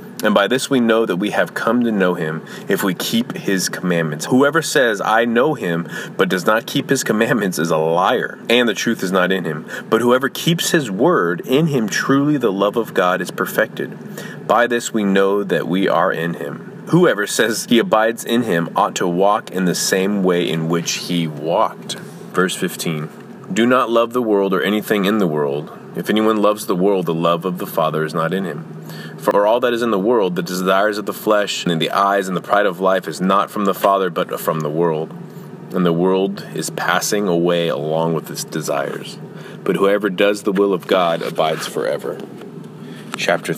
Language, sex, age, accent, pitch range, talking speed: English, male, 30-49, American, 85-115 Hz, 210 wpm